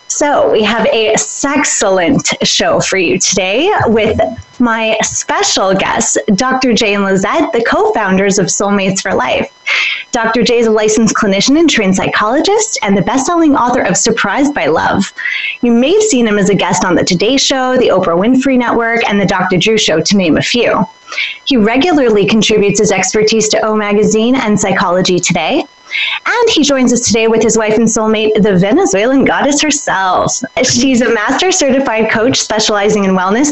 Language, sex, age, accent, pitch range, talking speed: English, female, 20-39, American, 205-260 Hz, 175 wpm